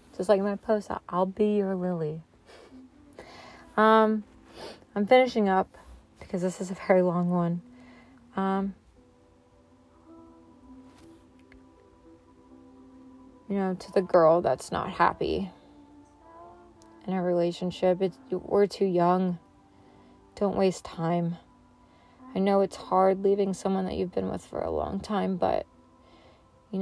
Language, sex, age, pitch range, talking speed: English, female, 30-49, 170-200 Hz, 120 wpm